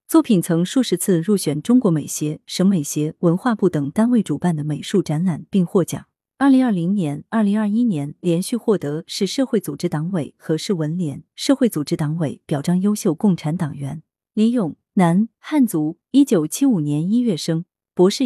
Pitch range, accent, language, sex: 160-225 Hz, native, Chinese, female